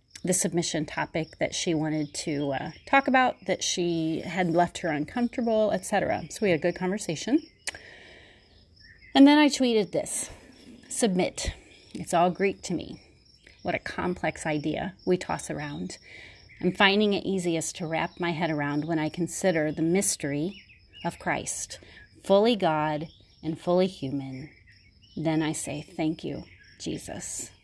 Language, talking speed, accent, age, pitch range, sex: English, 150 wpm, American, 30-49, 160-210 Hz, female